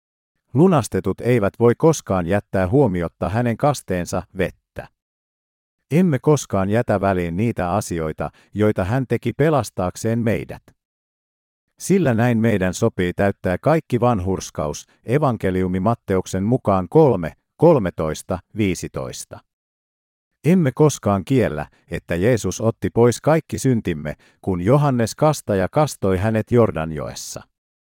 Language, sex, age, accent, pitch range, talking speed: Finnish, male, 50-69, native, 90-130 Hz, 105 wpm